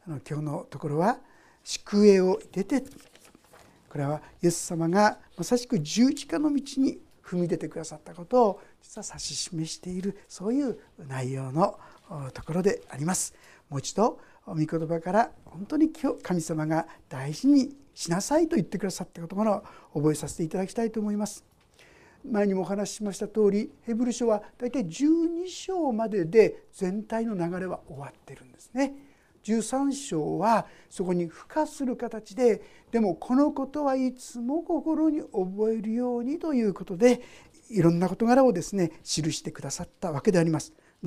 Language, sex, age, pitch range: Japanese, male, 60-79, 175-270 Hz